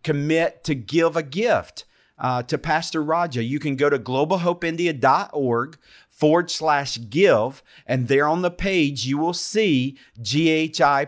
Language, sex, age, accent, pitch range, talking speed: English, male, 50-69, American, 130-160 Hz, 140 wpm